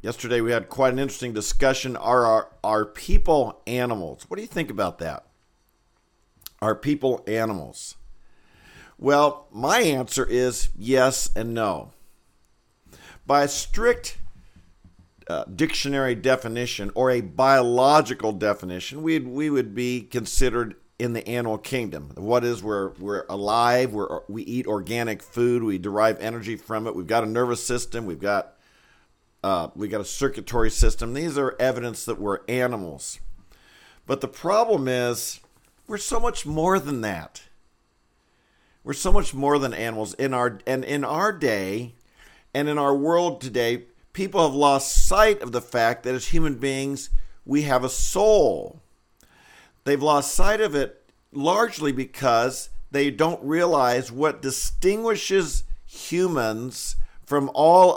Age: 50-69